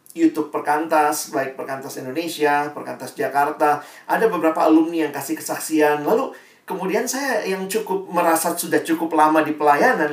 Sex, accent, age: male, native, 40-59